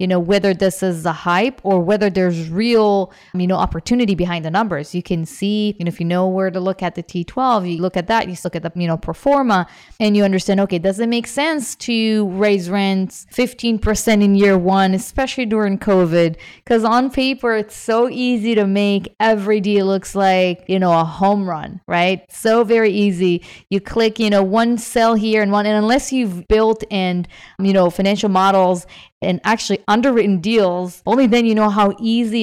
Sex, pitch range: female, 180-215 Hz